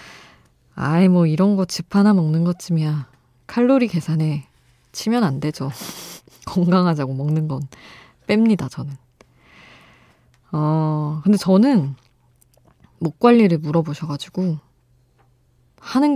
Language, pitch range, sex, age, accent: Korean, 135-190 Hz, female, 20-39, native